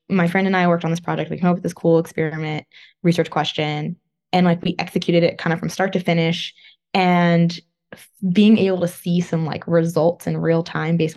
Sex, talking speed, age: female, 215 wpm, 20-39